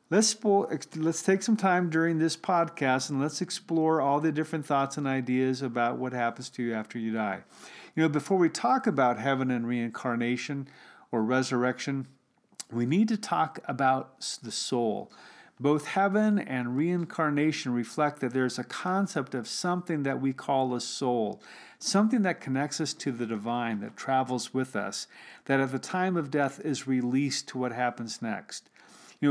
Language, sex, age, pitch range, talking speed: English, male, 40-59, 130-170 Hz, 170 wpm